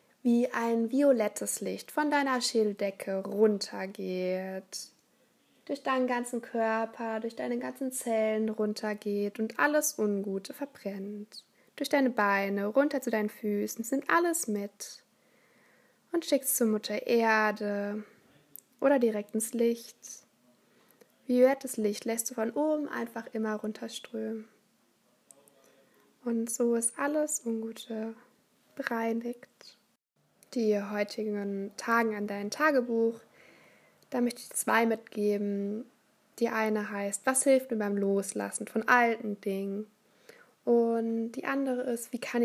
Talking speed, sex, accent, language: 115 wpm, female, German, German